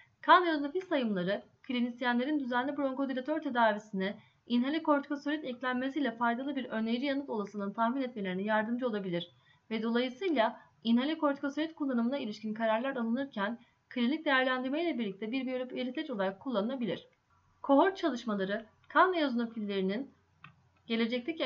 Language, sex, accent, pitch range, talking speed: Turkish, female, native, 225-285 Hz, 110 wpm